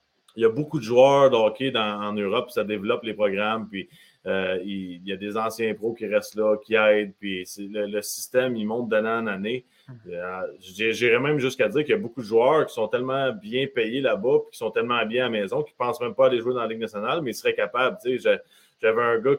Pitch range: 105-150 Hz